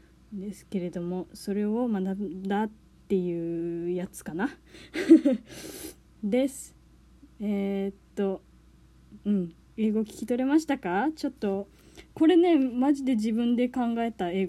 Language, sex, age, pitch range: Japanese, female, 20-39, 185-250 Hz